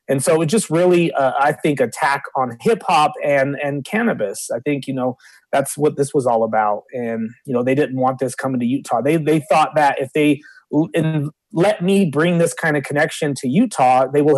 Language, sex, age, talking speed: English, male, 30-49, 220 wpm